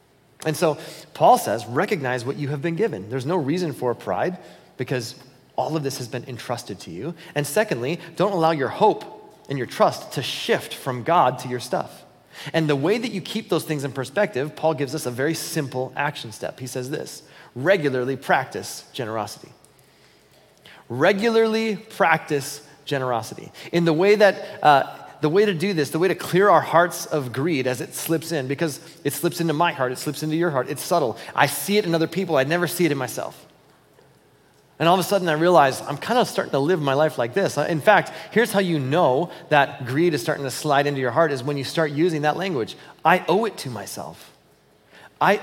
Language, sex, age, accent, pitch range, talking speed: English, male, 30-49, American, 140-175 Hz, 210 wpm